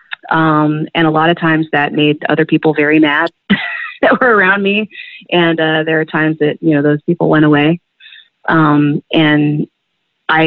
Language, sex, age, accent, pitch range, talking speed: English, female, 30-49, American, 145-165 Hz, 180 wpm